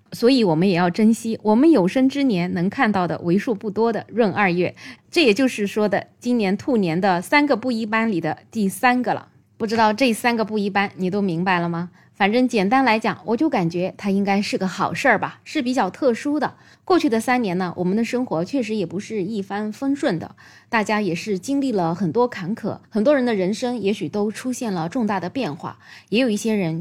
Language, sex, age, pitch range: Chinese, female, 20-39, 190-250 Hz